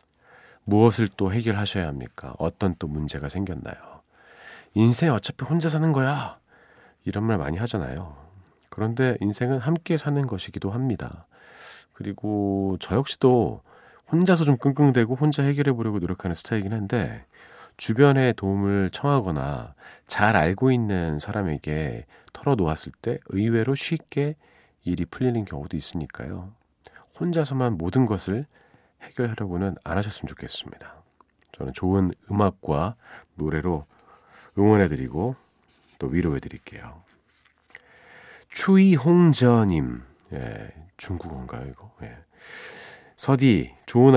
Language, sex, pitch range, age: Korean, male, 90-130 Hz, 40-59